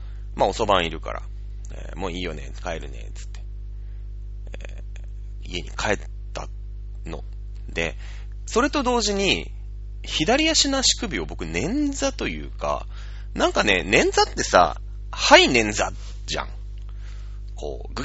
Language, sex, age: Japanese, male, 30-49